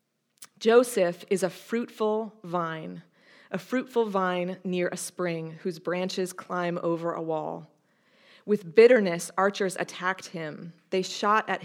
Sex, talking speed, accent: female, 130 wpm, American